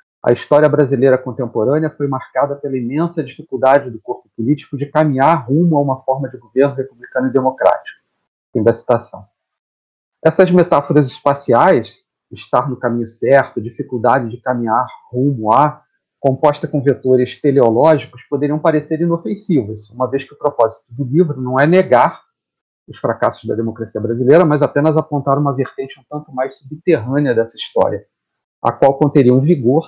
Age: 40-59